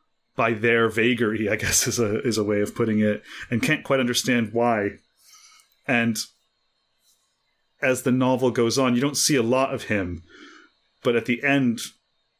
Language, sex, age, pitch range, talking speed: English, male, 30-49, 110-130 Hz, 170 wpm